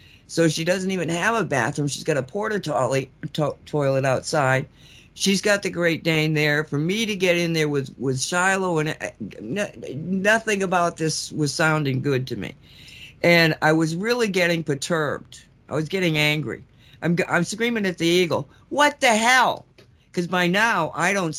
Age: 50-69